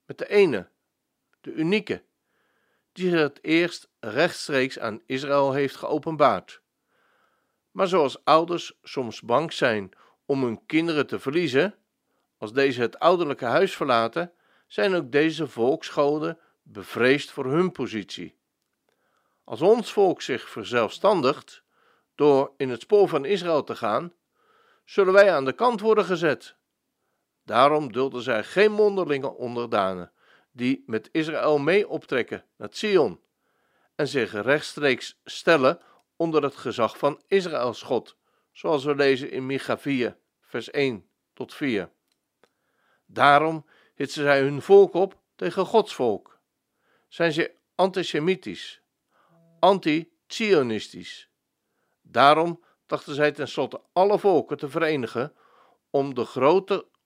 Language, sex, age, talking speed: Dutch, male, 50-69, 125 wpm